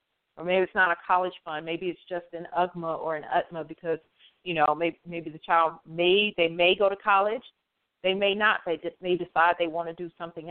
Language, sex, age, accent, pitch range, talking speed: English, female, 40-59, American, 165-205 Hz, 230 wpm